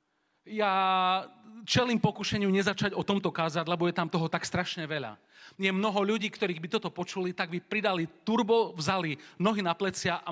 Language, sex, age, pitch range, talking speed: Slovak, male, 40-59, 160-205 Hz, 175 wpm